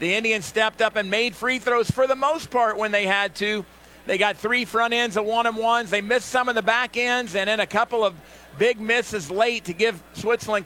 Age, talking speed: 50-69, 240 wpm